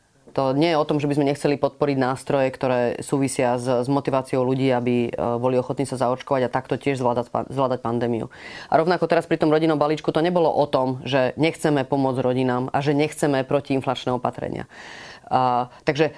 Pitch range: 135-155 Hz